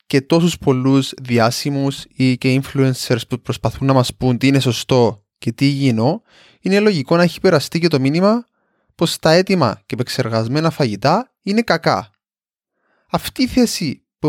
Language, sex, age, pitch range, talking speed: Greek, male, 20-39, 120-160 Hz, 160 wpm